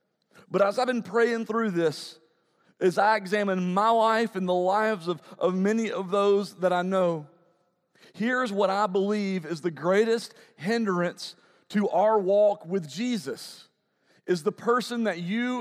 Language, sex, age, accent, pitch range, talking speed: English, male, 40-59, American, 190-230 Hz, 160 wpm